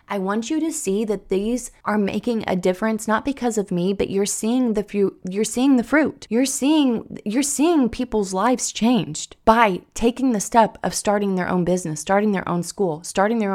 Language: English